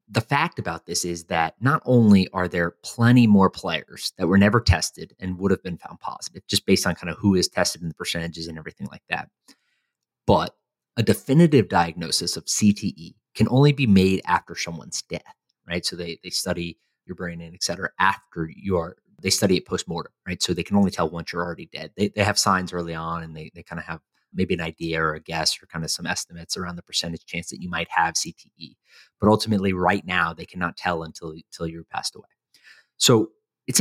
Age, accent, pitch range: 30-49, American, 85-100 Hz